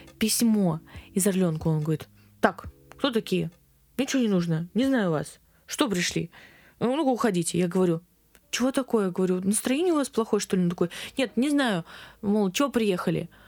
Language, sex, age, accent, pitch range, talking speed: Russian, female, 20-39, native, 220-290 Hz, 165 wpm